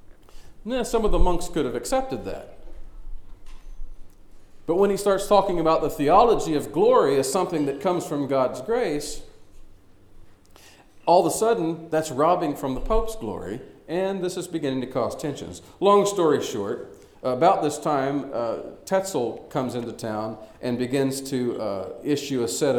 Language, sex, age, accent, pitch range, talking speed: English, male, 40-59, American, 105-155 Hz, 160 wpm